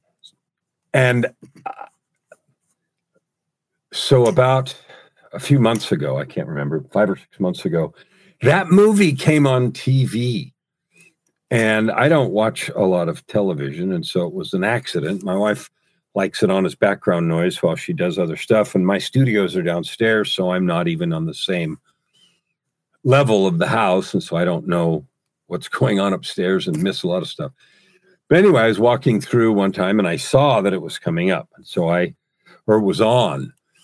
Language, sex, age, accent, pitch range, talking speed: English, male, 50-69, American, 100-140 Hz, 180 wpm